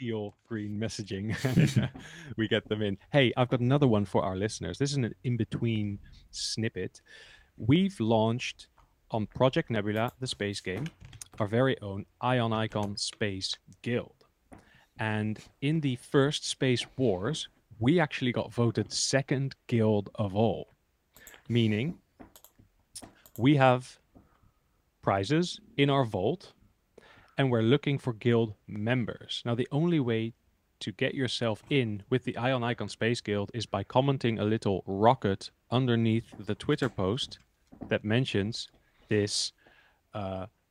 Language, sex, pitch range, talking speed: English, male, 105-130 Hz, 135 wpm